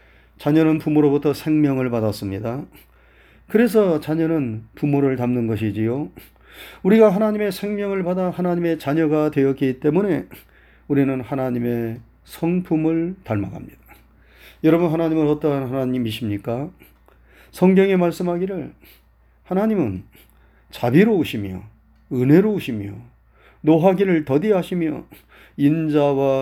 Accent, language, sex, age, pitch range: native, Korean, male, 40-59, 115-170 Hz